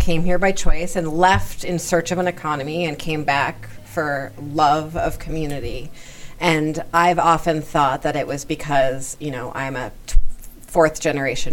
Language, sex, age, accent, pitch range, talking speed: English, female, 30-49, American, 140-185 Hz, 165 wpm